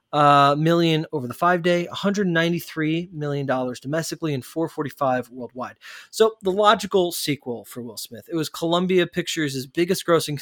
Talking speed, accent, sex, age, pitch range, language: 145 wpm, American, male, 20-39, 135-180 Hz, English